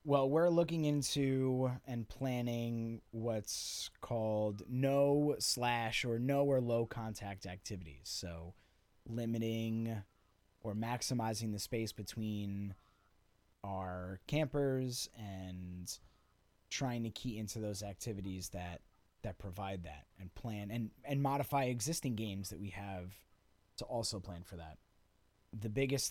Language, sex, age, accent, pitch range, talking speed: English, male, 30-49, American, 100-120 Hz, 120 wpm